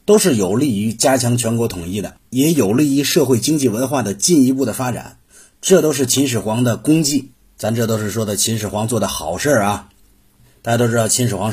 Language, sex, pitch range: Chinese, male, 105-135 Hz